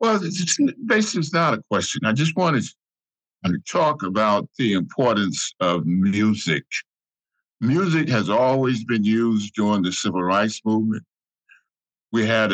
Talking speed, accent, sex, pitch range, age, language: 135 wpm, American, male, 90-125 Hz, 50-69, English